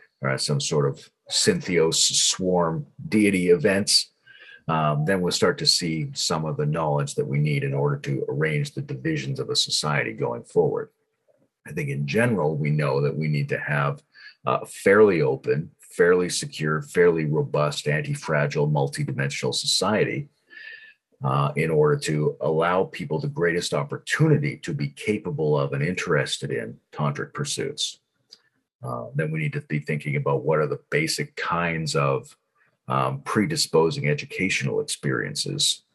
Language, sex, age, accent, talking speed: English, male, 40-59, American, 150 wpm